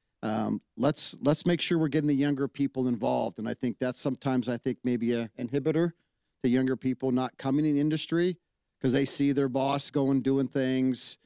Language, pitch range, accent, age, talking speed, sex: English, 115-140 Hz, American, 40-59, 195 wpm, male